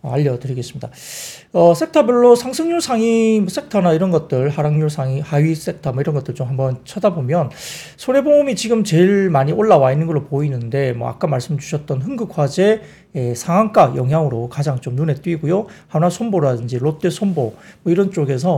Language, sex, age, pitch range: Korean, male, 40-59, 135-185 Hz